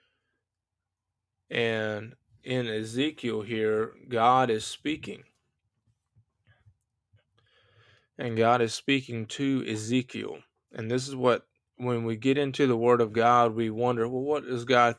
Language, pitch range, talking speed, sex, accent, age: English, 110-125 Hz, 125 wpm, male, American, 20-39